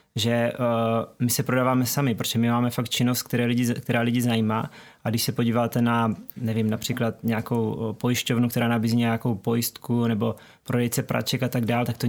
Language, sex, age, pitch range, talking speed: Czech, male, 20-39, 115-125 Hz, 180 wpm